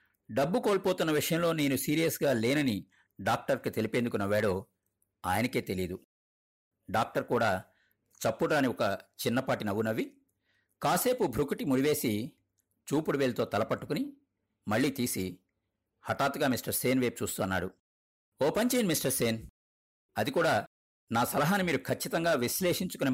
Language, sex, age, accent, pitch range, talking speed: Telugu, male, 50-69, native, 100-145 Hz, 105 wpm